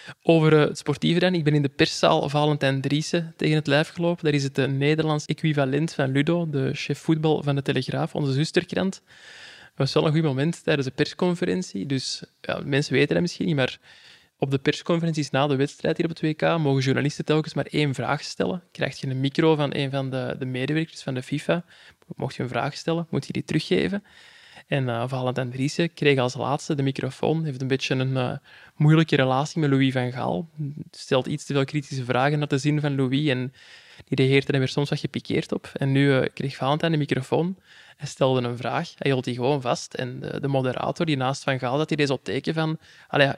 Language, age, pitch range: Dutch, 20-39, 135-160 Hz